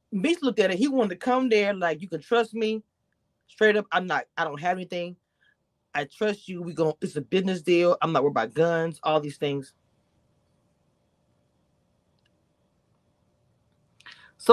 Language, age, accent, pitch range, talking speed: English, 30-49, American, 170-250 Hz, 165 wpm